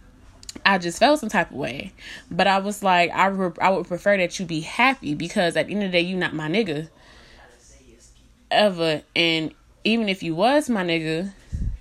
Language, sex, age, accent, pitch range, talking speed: English, female, 20-39, American, 165-200 Hz, 195 wpm